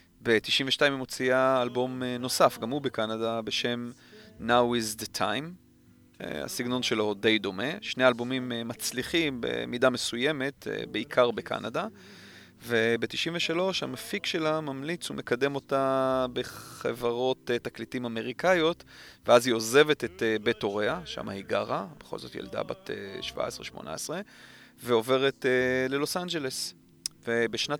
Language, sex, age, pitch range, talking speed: Hebrew, male, 30-49, 115-135 Hz, 110 wpm